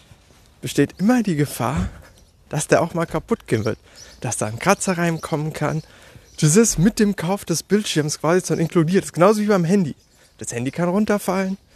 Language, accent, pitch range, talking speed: German, German, 140-195 Hz, 190 wpm